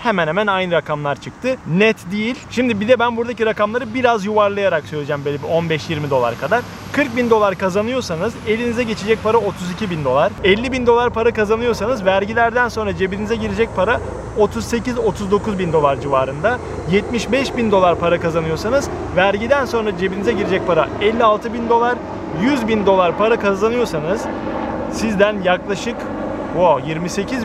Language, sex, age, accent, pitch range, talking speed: Turkish, male, 30-49, native, 190-245 Hz, 145 wpm